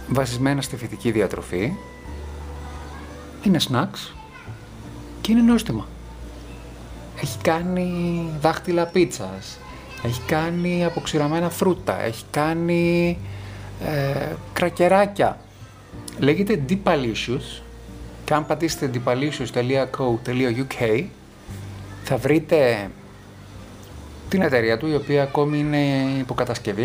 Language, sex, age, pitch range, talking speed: Greek, male, 30-49, 100-155 Hz, 80 wpm